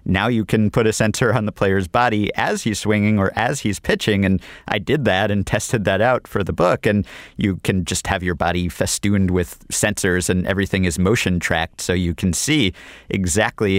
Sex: male